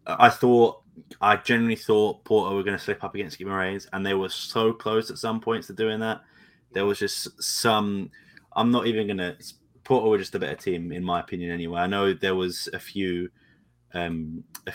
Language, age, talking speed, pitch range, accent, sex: English, 20-39, 210 wpm, 90-110 Hz, British, male